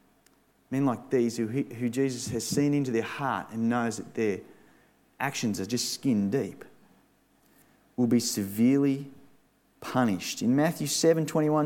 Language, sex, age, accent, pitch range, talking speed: English, male, 30-49, Australian, 110-150 Hz, 140 wpm